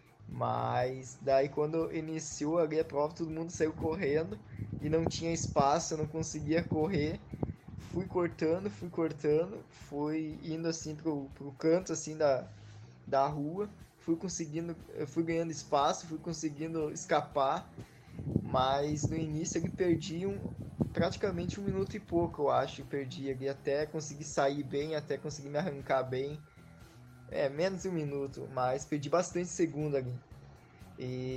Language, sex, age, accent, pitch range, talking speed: Portuguese, male, 20-39, Brazilian, 140-170 Hz, 145 wpm